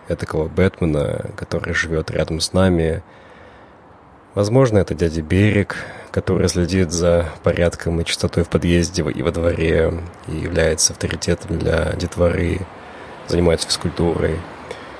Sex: male